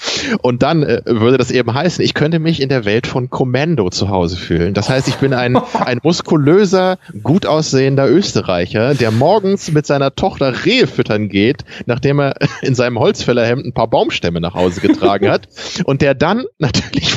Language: German